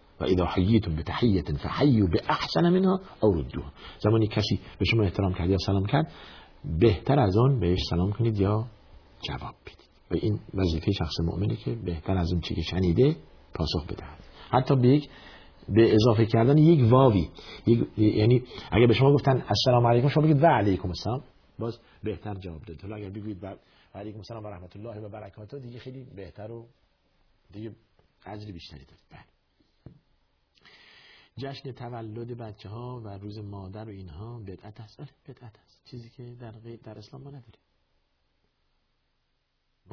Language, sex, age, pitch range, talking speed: Persian, male, 50-69, 95-125 Hz, 150 wpm